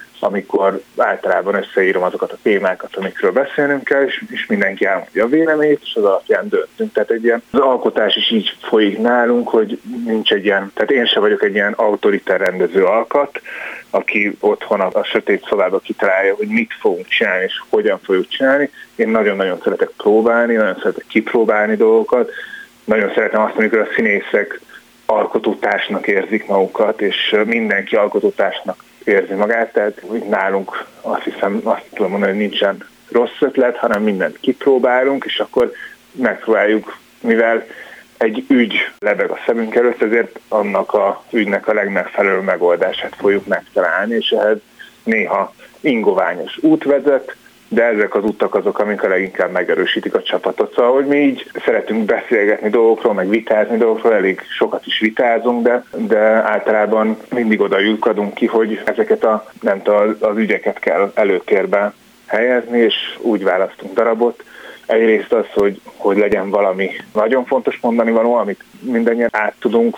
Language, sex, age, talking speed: Hungarian, male, 30-49, 150 wpm